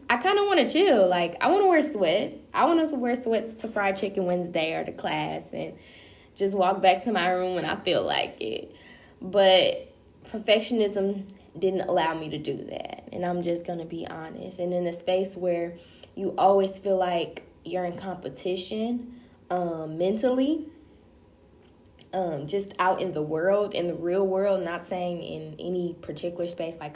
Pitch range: 170-205 Hz